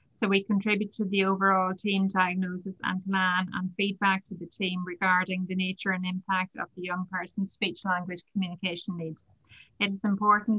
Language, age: English, 30-49